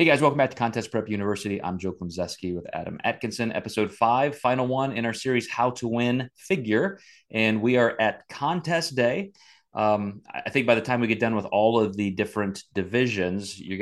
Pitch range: 95-115 Hz